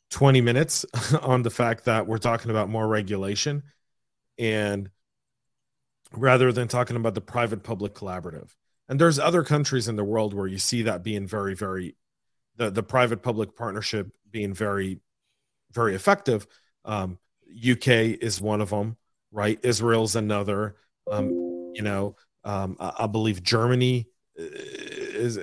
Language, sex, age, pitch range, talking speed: English, male, 40-59, 105-125 Hz, 145 wpm